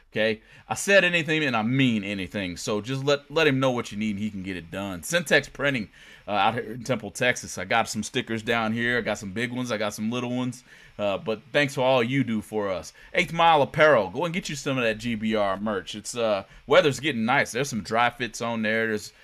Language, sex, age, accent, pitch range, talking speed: English, male, 30-49, American, 105-130 Hz, 250 wpm